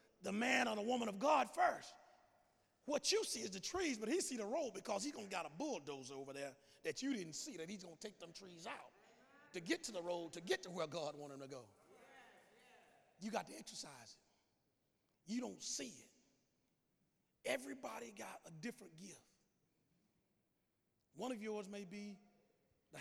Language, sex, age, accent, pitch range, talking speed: English, male, 40-59, American, 150-230 Hz, 195 wpm